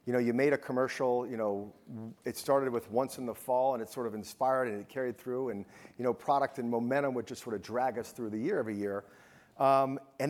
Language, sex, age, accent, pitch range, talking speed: English, male, 50-69, American, 110-130 Hz, 250 wpm